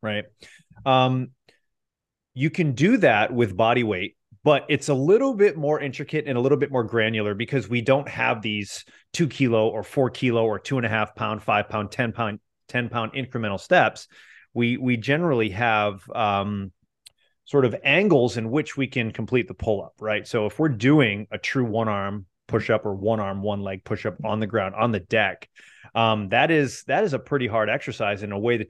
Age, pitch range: 30-49, 105-130 Hz